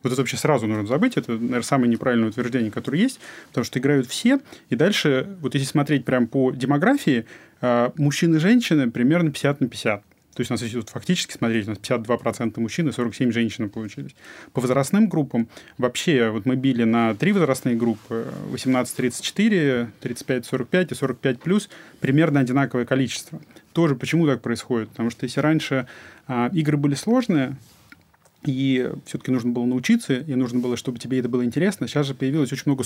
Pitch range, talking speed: 120-150 Hz, 175 wpm